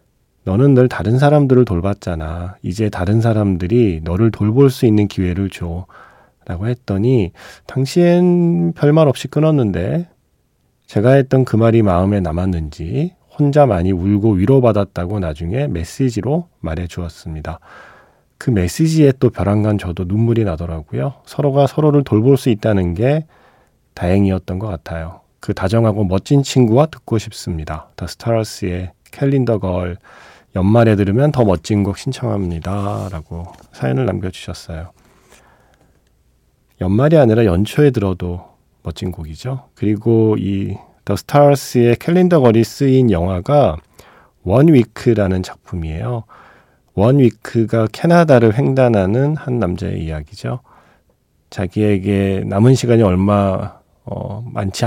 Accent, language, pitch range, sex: native, Korean, 90-130 Hz, male